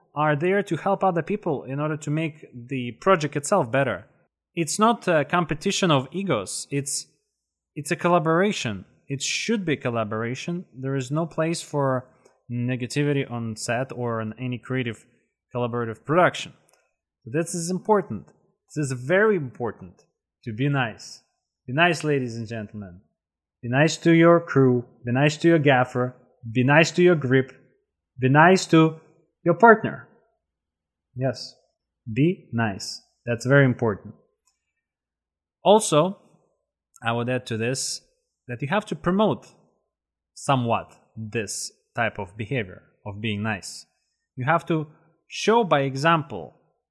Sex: male